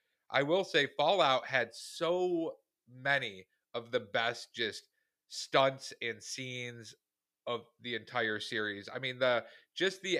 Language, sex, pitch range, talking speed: English, male, 115-135 Hz, 135 wpm